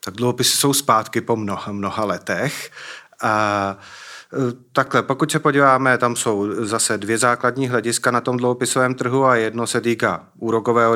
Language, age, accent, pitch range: Czech, 40-59, native, 105-120 Hz